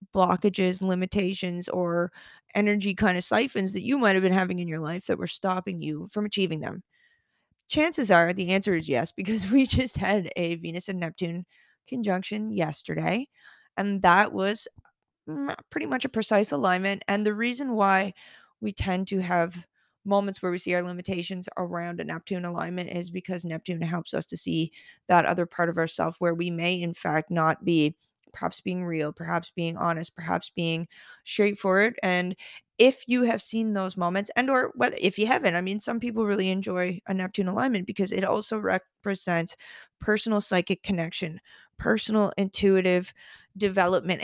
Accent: American